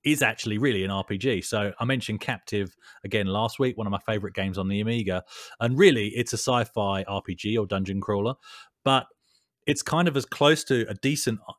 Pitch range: 100-130 Hz